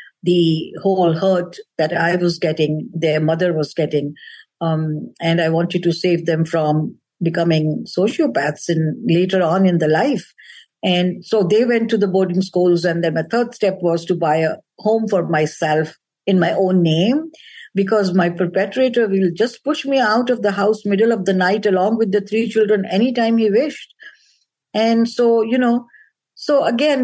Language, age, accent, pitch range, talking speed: English, 50-69, Indian, 175-235 Hz, 180 wpm